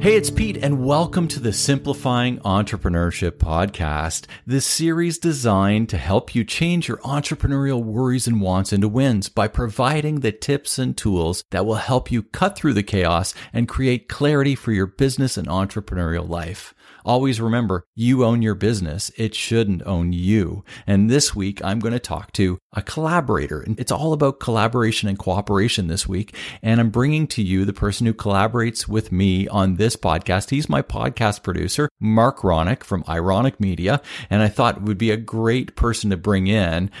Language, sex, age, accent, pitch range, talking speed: English, male, 50-69, American, 95-120 Hz, 180 wpm